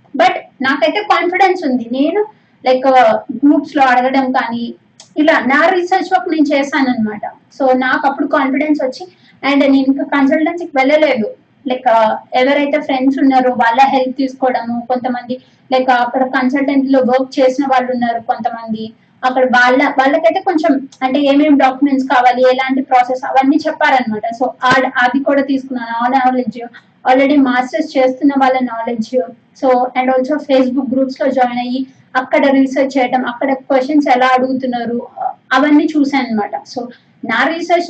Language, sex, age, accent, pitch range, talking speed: Telugu, female, 20-39, native, 255-295 Hz, 135 wpm